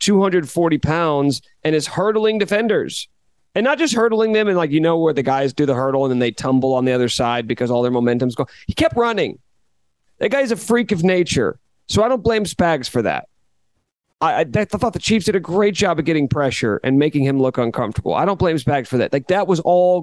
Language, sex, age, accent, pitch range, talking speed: English, male, 40-59, American, 130-175 Hz, 235 wpm